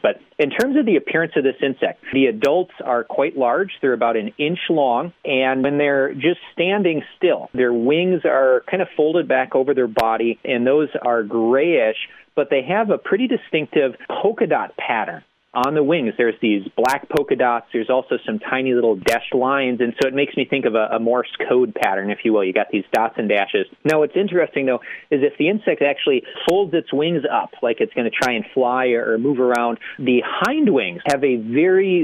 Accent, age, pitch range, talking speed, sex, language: American, 40-59, 120-150 Hz, 210 wpm, male, English